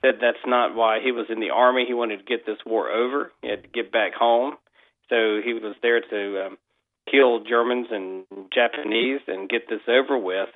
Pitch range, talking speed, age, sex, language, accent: 105-125 Hz, 210 wpm, 40-59, male, English, American